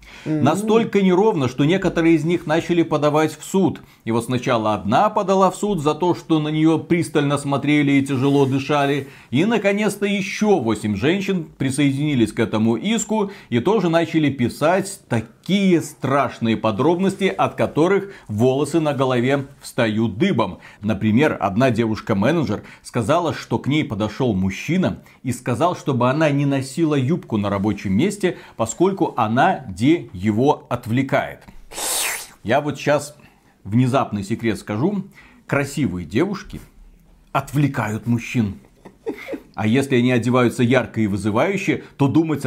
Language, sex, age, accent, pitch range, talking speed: Russian, male, 40-59, native, 115-165 Hz, 135 wpm